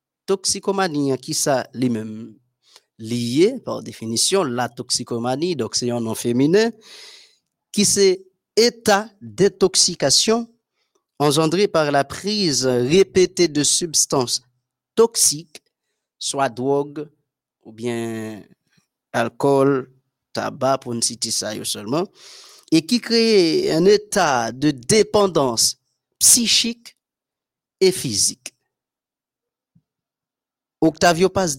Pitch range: 125-190 Hz